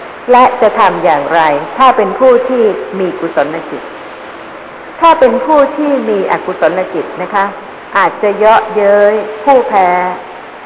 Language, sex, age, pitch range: Thai, female, 60-79, 195-275 Hz